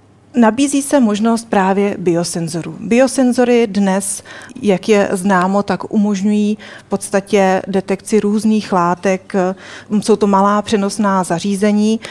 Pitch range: 185-215 Hz